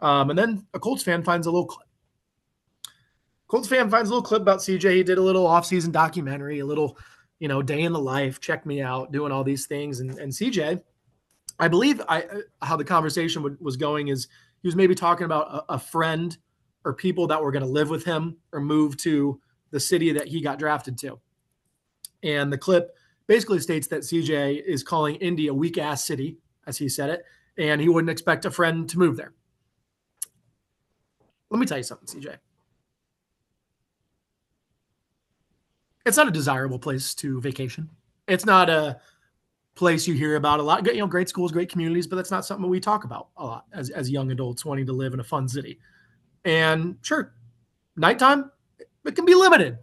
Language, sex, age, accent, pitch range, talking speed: English, male, 20-39, American, 140-180 Hz, 195 wpm